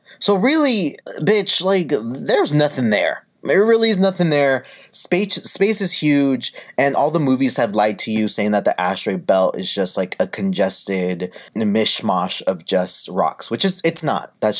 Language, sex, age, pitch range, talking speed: English, male, 30-49, 125-190 Hz, 175 wpm